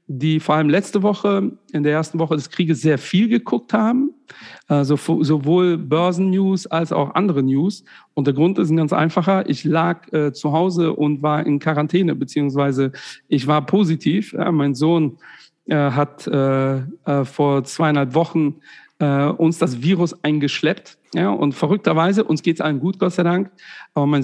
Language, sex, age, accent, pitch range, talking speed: German, male, 50-69, German, 150-185 Hz, 175 wpm